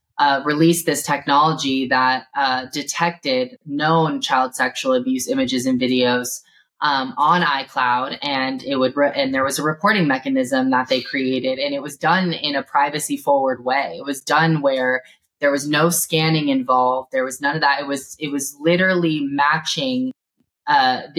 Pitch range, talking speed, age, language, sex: 145-175 Hz, 165 wpm, 20-39, English, female